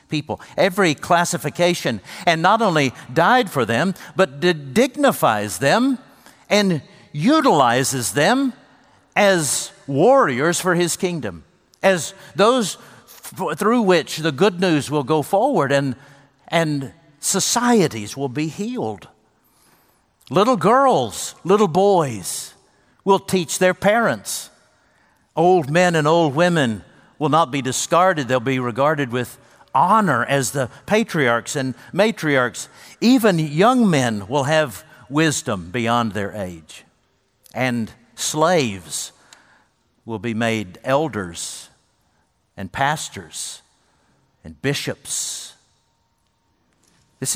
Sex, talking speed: male, 105 wpm